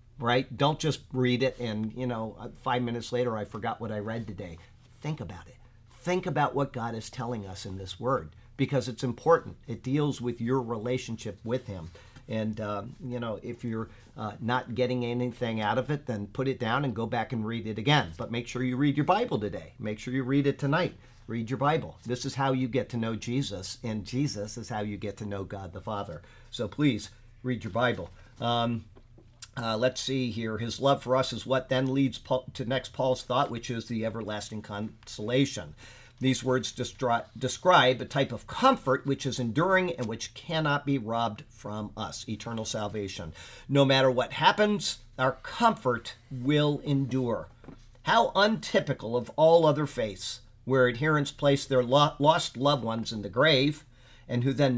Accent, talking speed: American, 190 wpm